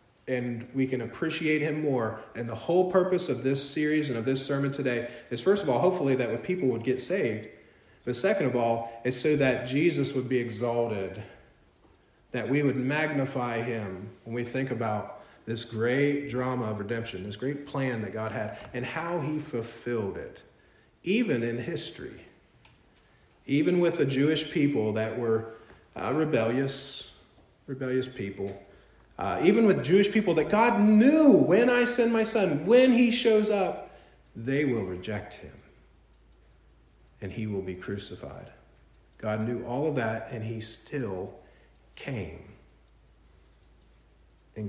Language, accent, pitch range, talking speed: English, American, 110-145 Hz, 155 wpm